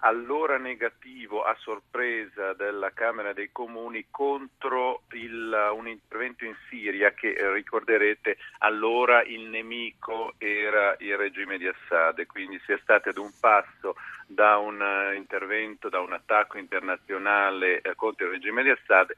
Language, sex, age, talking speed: Italian, male, 50-69, 140 wpm